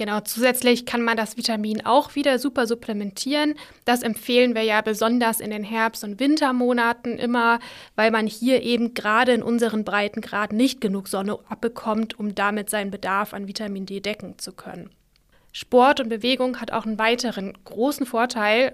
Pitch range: 215-255 Hz